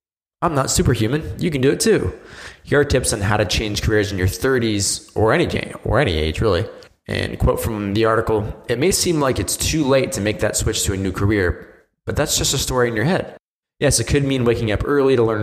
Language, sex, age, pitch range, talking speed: English, male, 20-39, 100-130 Hz, 235 wpm